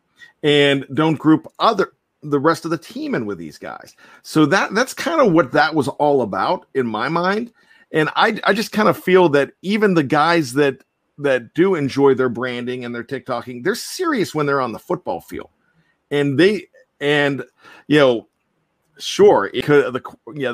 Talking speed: 185 wpm